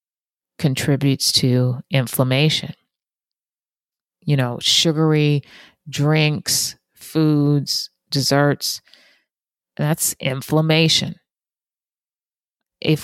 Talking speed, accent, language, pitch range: 55 wpm, American, English, 135-170 Hz